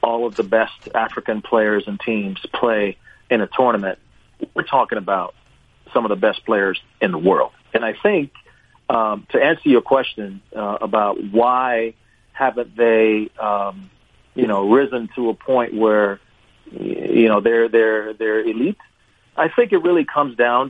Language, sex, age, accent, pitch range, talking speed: English, male, 40-59, American, 110-145 Hz, 160 wpm